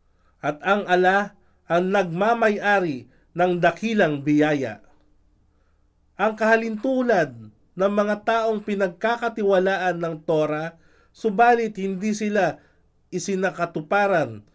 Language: Filipino